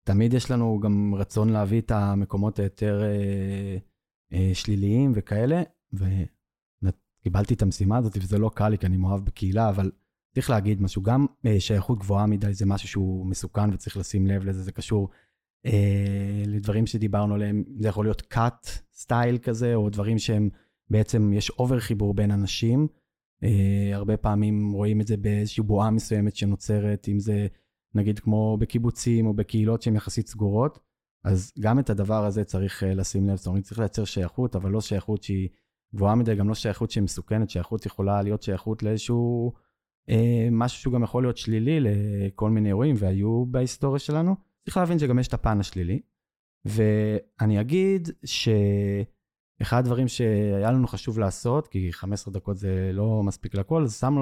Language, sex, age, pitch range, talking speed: Hebrew, male, 20-39, 100-115 Hz, 165 wpm